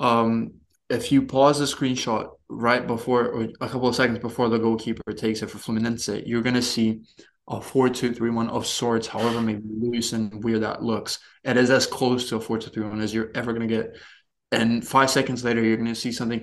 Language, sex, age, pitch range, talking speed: English, male, 20-39, 115-125 Hz, 210 wpm